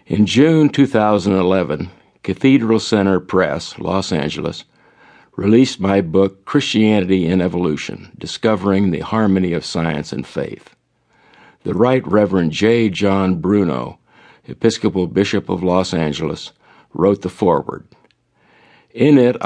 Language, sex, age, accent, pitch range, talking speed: English, male, 50-69, American, 90-110 Hz, 115 wpm